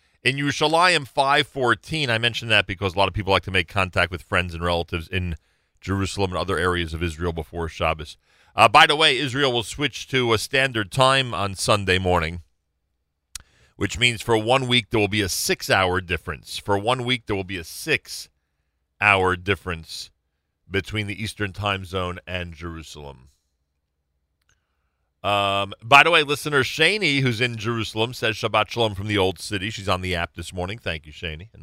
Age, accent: 40-59, American